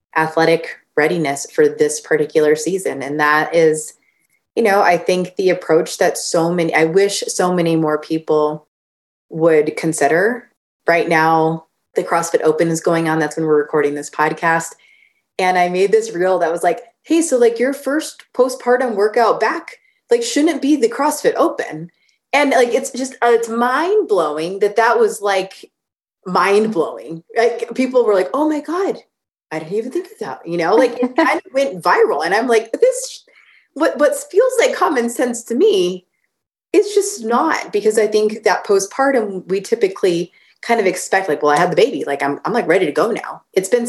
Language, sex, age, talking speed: English, female, 20-39, 190 wpm